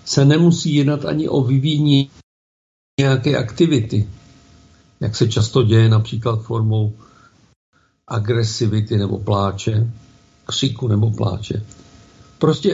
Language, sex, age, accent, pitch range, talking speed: Czech, male, 50-69, native, 110-130 Hz, 100 wpm